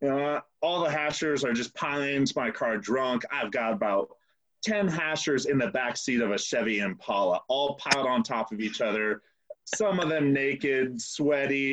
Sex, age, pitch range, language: male, 30-49, 140-215 Hz, English